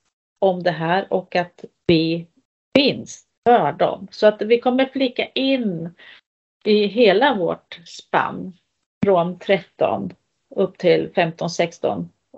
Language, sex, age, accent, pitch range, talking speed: Swedish, female, 40-59, native, 180-215 Hz, 115 wpm